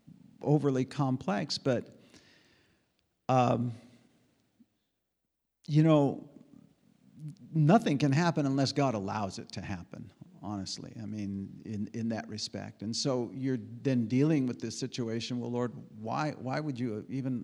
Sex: male